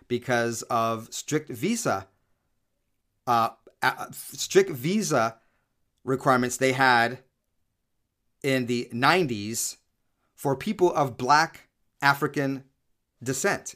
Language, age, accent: English, 40-59, American